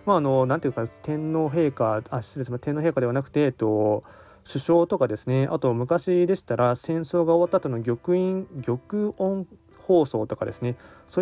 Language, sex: Japanese, male